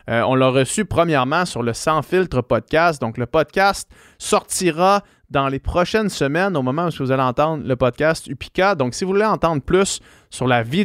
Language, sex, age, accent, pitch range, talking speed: French, male, 30-49, Canadian, 125-165 Hz, 200 wpm